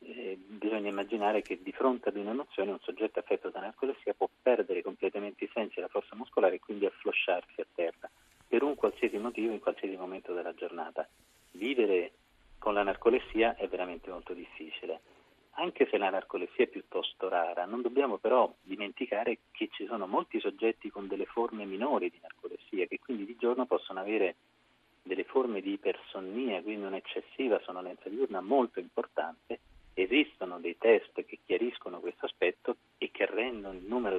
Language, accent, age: Italian, native, 40-59